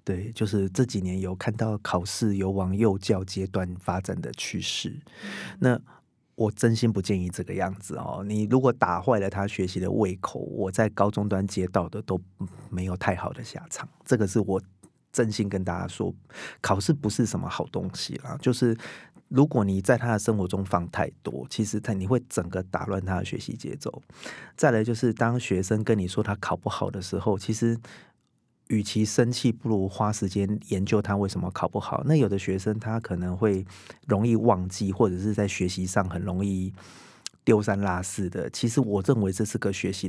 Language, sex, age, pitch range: Chinese, male, 30-49, 95-115 Hz